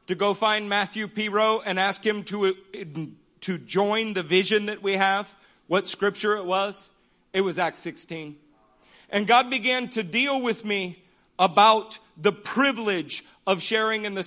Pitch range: 190-235 Hz